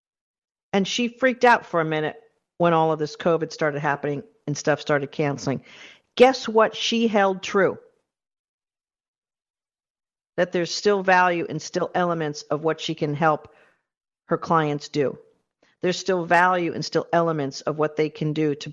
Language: English